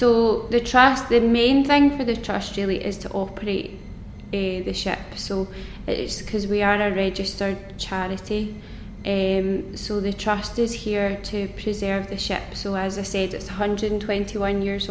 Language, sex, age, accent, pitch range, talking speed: English, female, 20-39, British, 190-205 Hz, 165 wpm